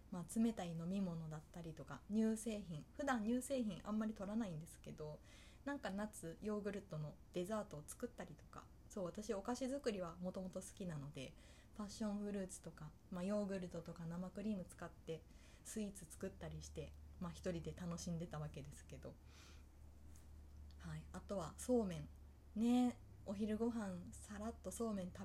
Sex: female